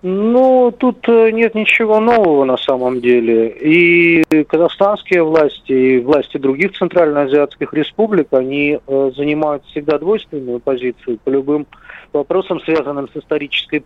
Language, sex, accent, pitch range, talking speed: Russian, male, native, 125-170 Hz, 115 wpm